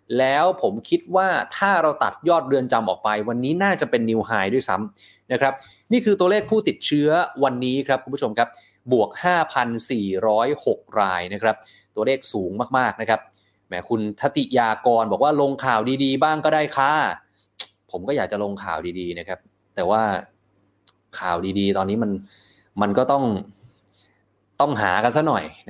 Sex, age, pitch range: male, 20-39, 105-135 Hz